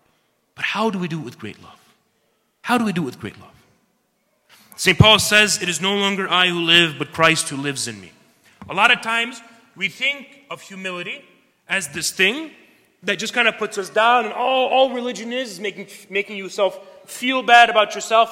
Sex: male